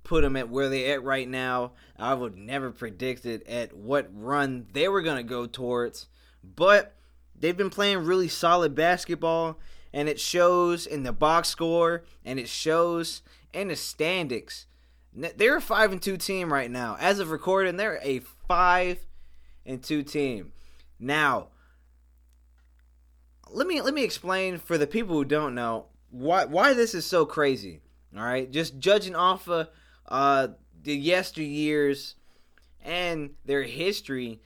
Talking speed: 155 wpm